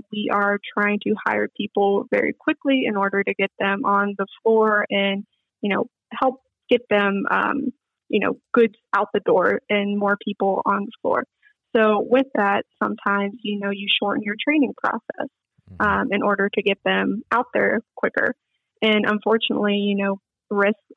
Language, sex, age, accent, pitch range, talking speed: English, female, 20-39, American, 205-240 Hz, 170 wpm